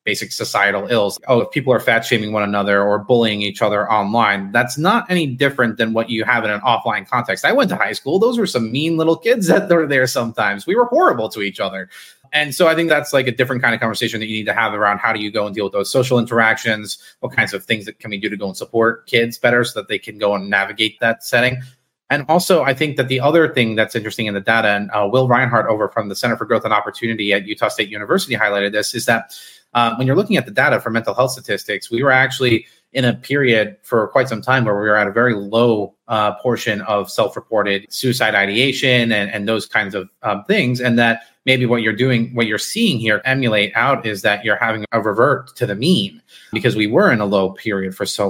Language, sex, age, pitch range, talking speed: English, male, 30-49, 105-130 Hz, 250 wpm